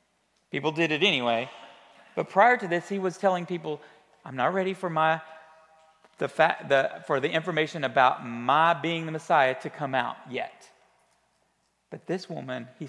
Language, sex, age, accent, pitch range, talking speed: English, male, 40-59, American, 140-185 Hz, 170 wpm